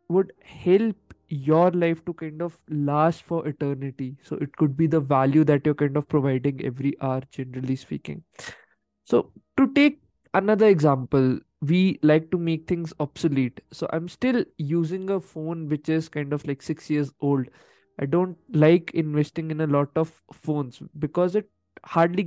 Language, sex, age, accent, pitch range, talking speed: Hindi, male, 20-39, native, 150-190 Hz, 165 wpm